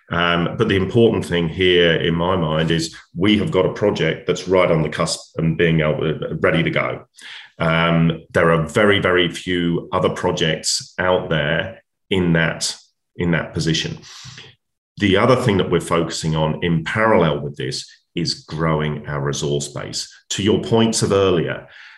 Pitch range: 80-90 Hz